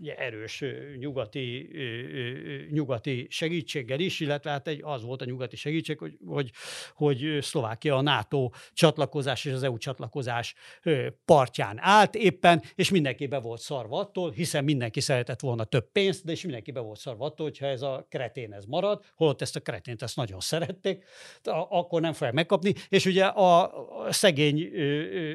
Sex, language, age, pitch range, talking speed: male, Hungarian, 60-79, 135-165 Hz, 160 wpm